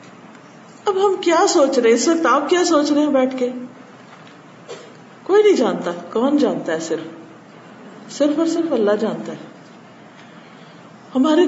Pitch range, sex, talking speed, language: 220-315 Hz, female, 140 wpm, Urdu